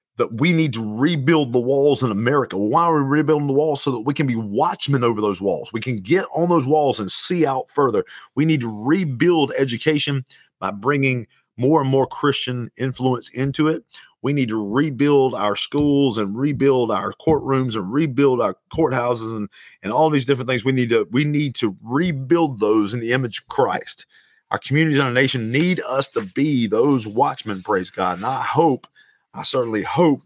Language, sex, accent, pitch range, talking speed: English, male, American, 125-155 Hz, 200 wpm